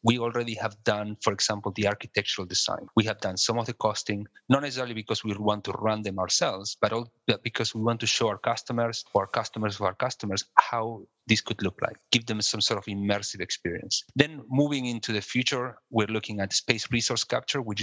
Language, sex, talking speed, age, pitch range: English, male, 210 wpm, 30-49, 100-115 Hz